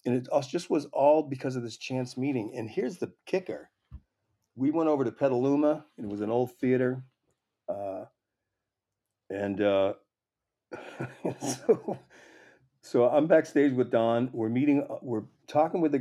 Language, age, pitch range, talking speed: English, 50-69, 105-135 Hz, 150 wpm